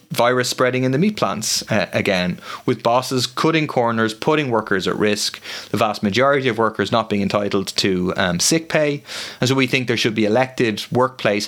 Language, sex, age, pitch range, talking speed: English, male, 30-49, 105-140 Hz, 195 wpm